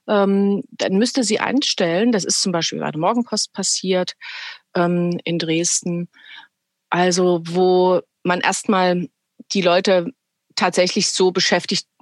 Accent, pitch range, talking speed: German, 175-215 Hz, 125 wpm